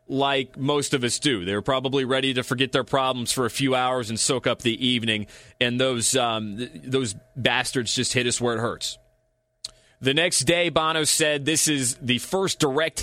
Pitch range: 120-140 Hz